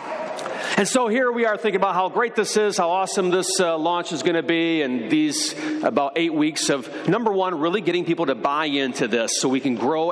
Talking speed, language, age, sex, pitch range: 230 wpm, English, 40-59, male, 170-250 Hz